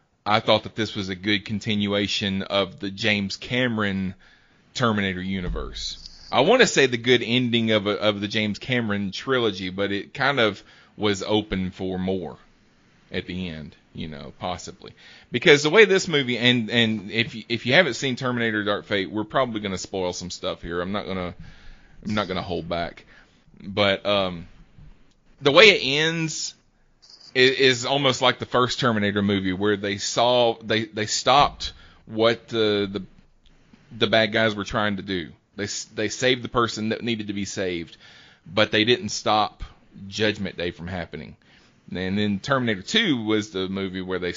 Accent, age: American, 30-49